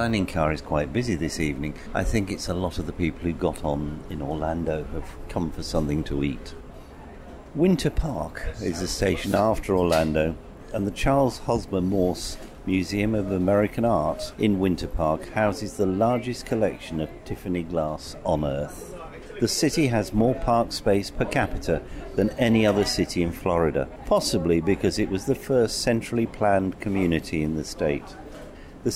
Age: 50-69